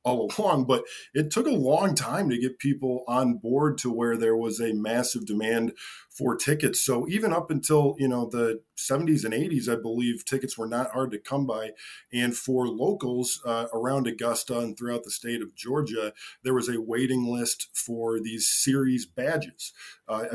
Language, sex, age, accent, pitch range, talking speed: English, male, 20-39, American, 120-150 Hz, 185 wpm